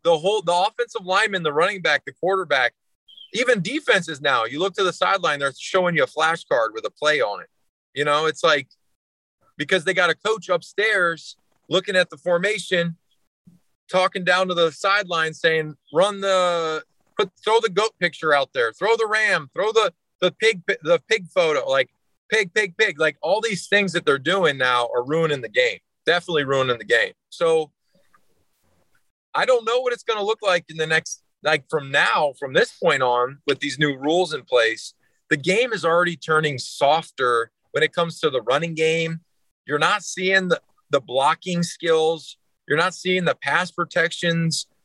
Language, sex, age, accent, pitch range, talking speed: English, male, 30-49, American, 155-200 Hz, 185 wpm